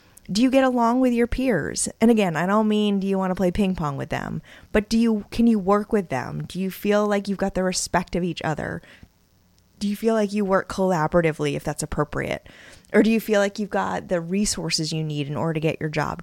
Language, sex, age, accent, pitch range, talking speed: English, female, 20-39, American, 160-210 Hz, 250 wpm